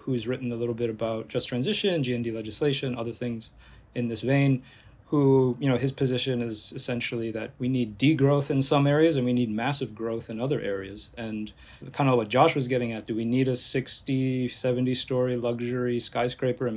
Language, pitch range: English, 115-135 Hz